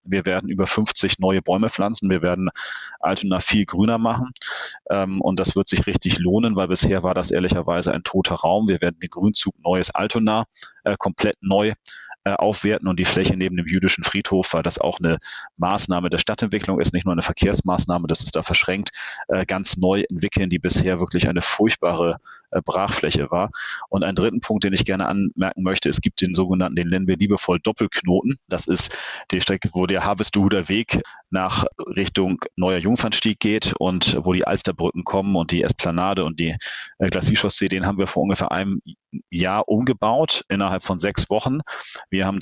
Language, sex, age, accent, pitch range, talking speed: German, male, 30-49, German, 90-100 Hz, 180 wpm